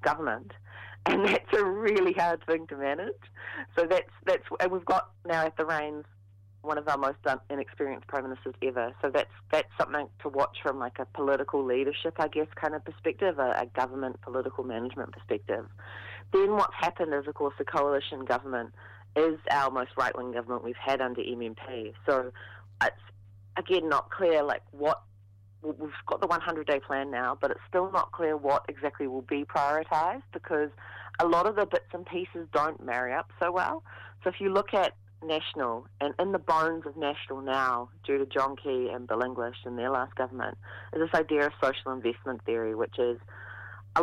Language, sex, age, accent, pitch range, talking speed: English, female, 30-49, Australian, 120-155 Hz, 185 wpm